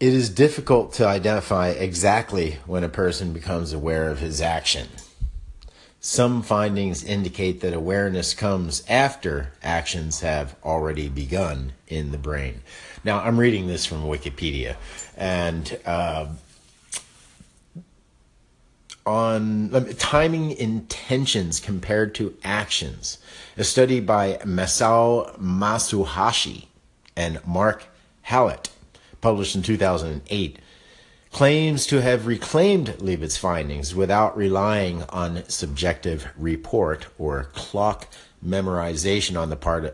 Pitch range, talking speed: 80-110 Hz, 110 wpm